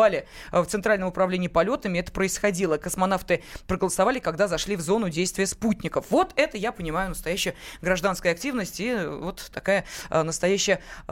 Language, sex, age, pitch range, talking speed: Russian, female, 20-39, 180-230 Hz, 135 wpm